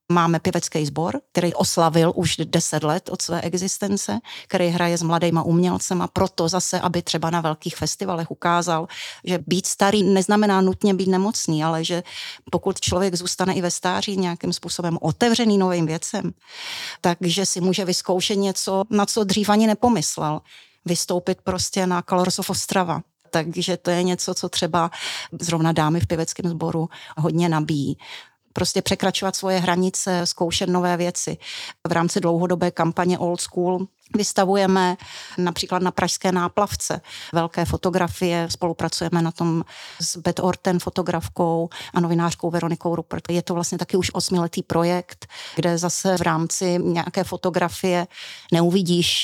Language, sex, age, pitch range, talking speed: Czech, female, 40-59, 170-190 Hz, 145 wpm